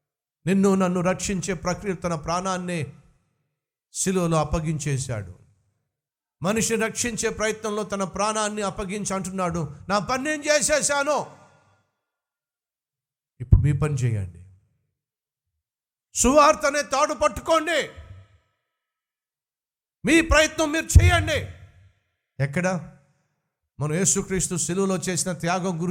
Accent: native